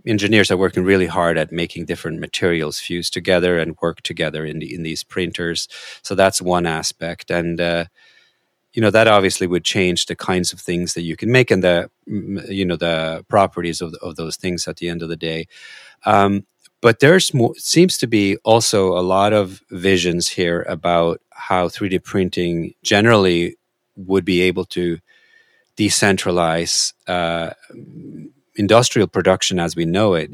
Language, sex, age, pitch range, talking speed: English, male, 30-49, 85-105 Hz, 170 wpm